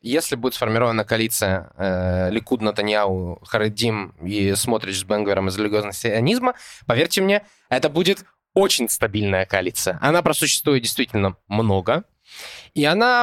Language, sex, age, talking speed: Russian, male, 20-39, 120 wpm